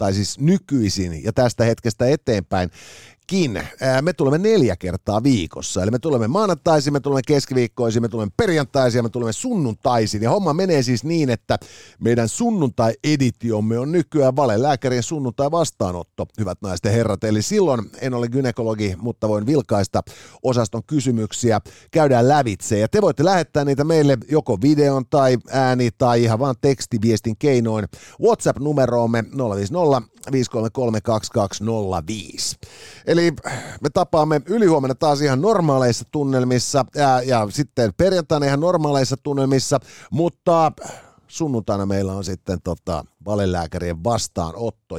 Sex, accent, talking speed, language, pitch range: male, native, 125 wpm, Finnish, 110-150 Hz